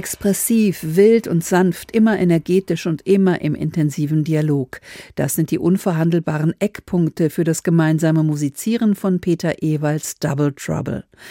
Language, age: German, 50-69